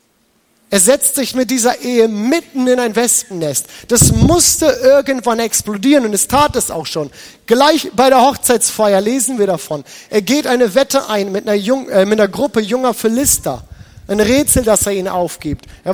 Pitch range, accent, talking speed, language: 180-245 Hz, German, 175 wpm, German